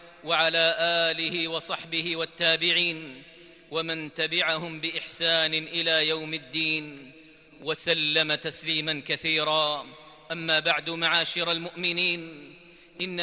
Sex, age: male, 40-59